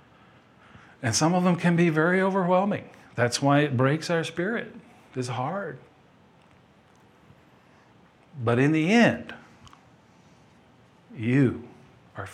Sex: male